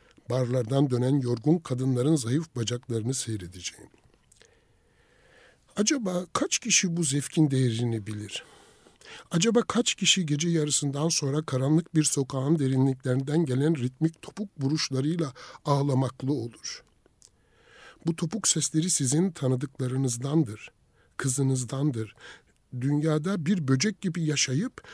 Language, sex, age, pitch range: Turkish, male, 60-79, 125-160 Hz